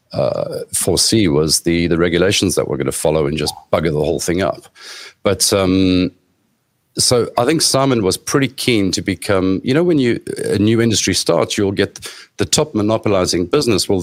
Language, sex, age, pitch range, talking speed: English, male, 50-69, 85-105 Hz, 190 wpm